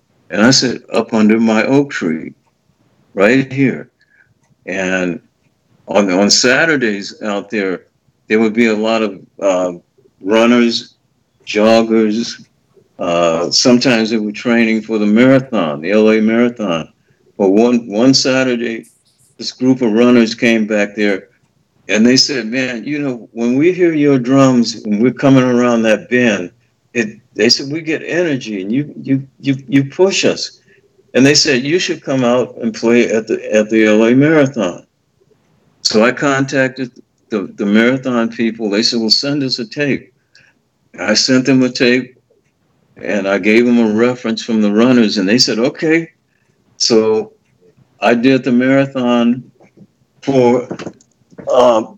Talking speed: 150 wpm